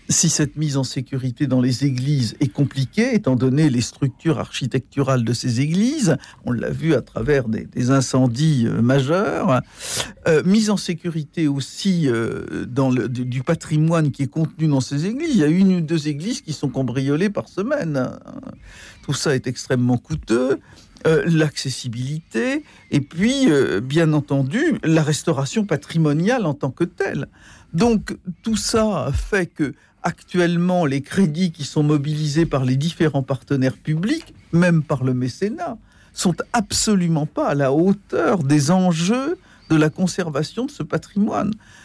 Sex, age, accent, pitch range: male, 60-79, French, 135-185 Hz